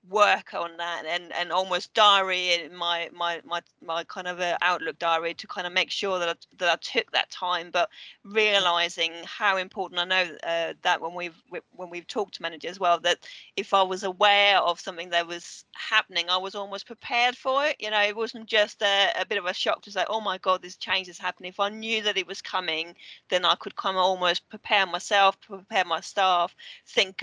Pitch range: 175-210 Hz